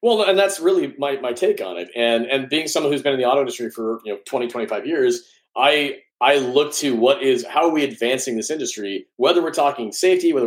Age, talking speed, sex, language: 30-49, 240 wpm, male, English